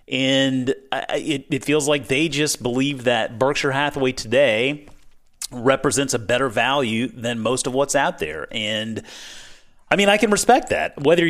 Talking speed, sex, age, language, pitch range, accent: 160 wpm, male, 30-49, English, 120-155 Hz, American